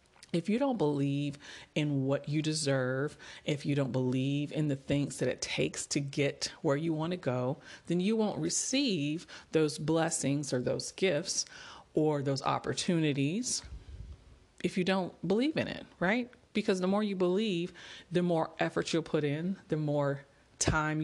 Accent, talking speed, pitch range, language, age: American, 165 wpm, 145-190 Hz, English, 40-59